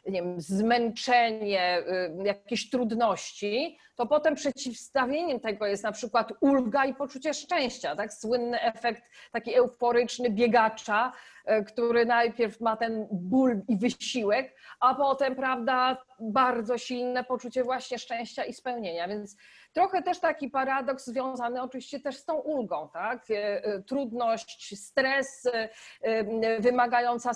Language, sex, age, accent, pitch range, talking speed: Polish, female, 40-59, native, 215-265 Hz, 115 wpm